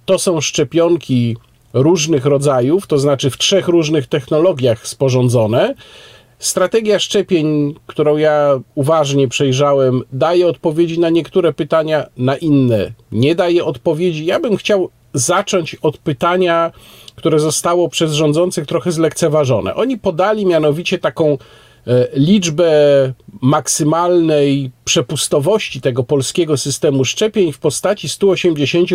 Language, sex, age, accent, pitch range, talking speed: Polish, male, 40-59, native, 135-175 Hz, 110 wpm